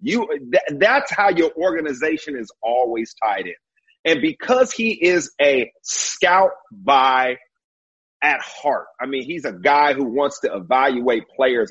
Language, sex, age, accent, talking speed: English, male, 40-59, American, 145 wpm